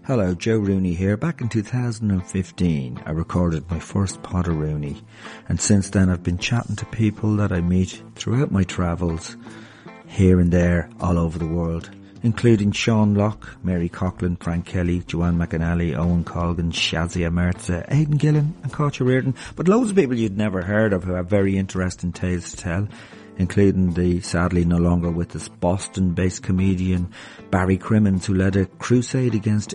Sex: male